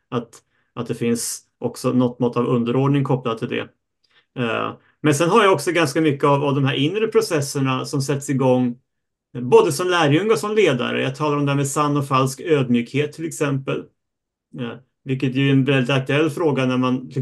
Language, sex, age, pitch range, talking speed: Swedish, male, 30-49, 125-150 Hz, 190 wpm